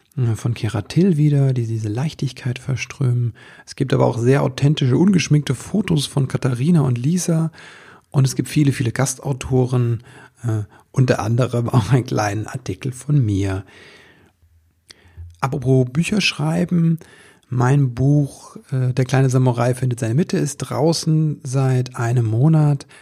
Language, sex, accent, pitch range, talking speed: German, male, German, 120-145 Hz, 135 wpm